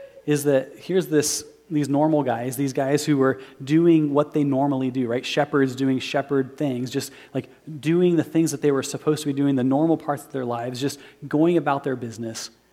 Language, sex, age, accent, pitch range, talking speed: English, male, 30-49, American, 135-155 Hz, 205 wpm